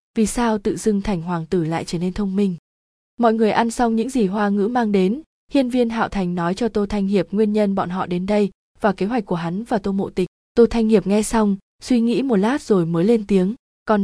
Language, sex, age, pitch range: Vietnamese, female, 20-39, 190-230 Hz